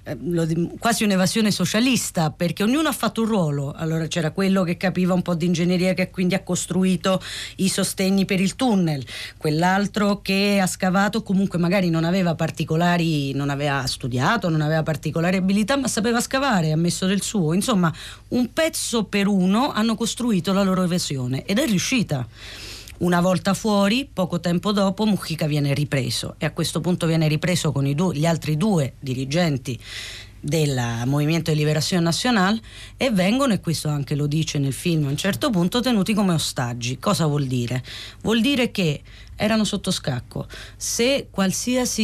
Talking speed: 165 wpm